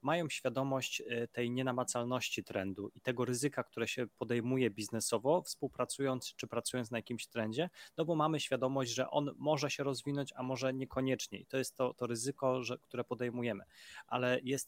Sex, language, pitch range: male, Polish, 115-130 Hz